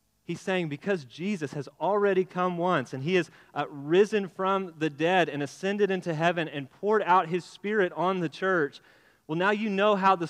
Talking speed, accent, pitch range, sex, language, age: 190 wpm, American, 160-200 Hz, male, English, 30-49